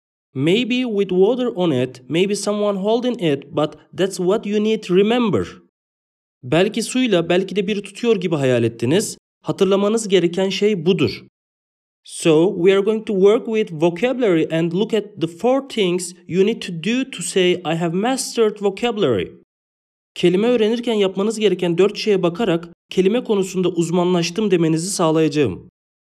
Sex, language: male, English